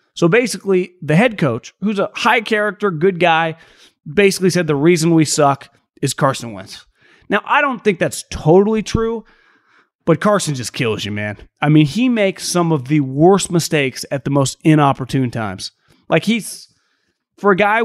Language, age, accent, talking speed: English, 30-49, American, 175 wpm